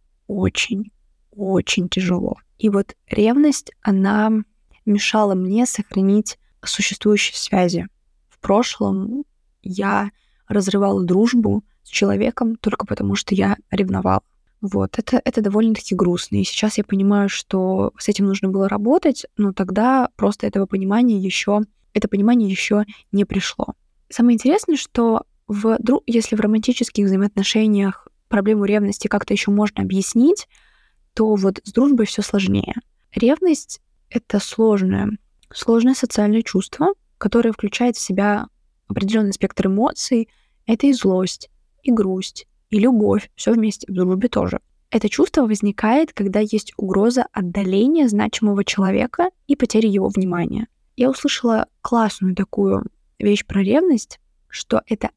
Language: Russian